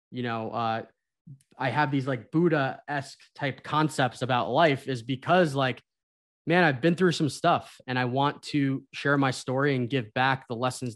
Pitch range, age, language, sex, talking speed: 115-140 Hz, 20-39, English, male, 180 wpm